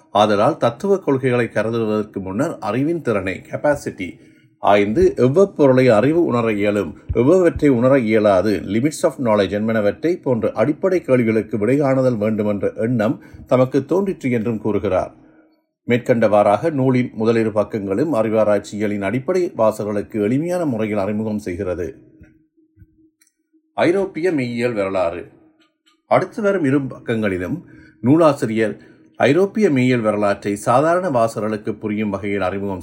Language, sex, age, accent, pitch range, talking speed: Tamil, male, 50-69, native, 105-140 Hz, 90 wpm